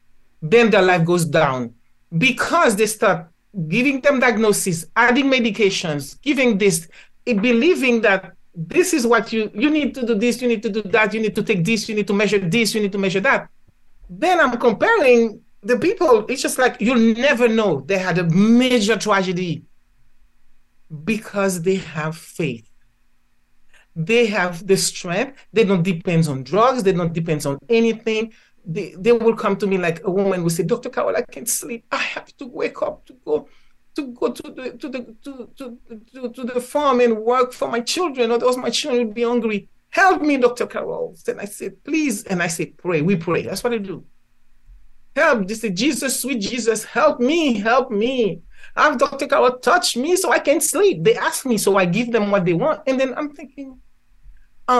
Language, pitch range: English, 195-255 Hz